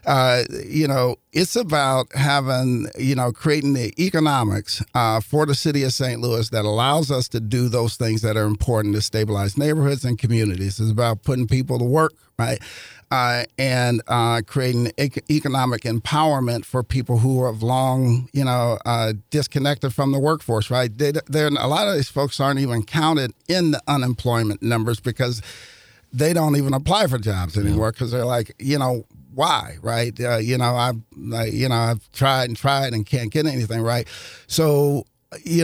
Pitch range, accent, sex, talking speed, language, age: 115-140 Hz, American, male, 175 wpm, English, 50-69